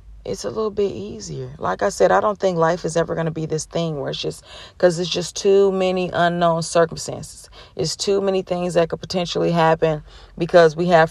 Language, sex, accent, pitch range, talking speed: English, female, American, 150-185 Hz, 215 wpm